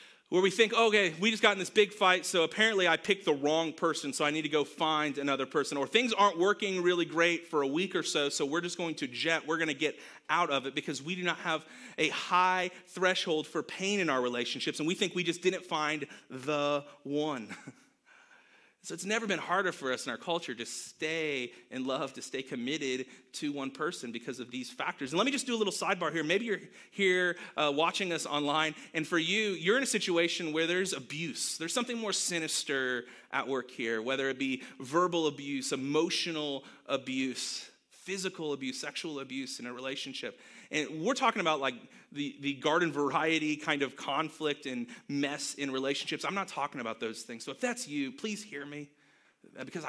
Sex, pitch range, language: male, 135-180 Hz, English